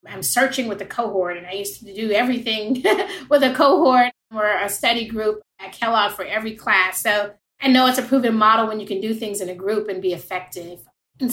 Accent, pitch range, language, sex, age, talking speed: American, 190-235 Hz, English, female, 30-49, 220 wpm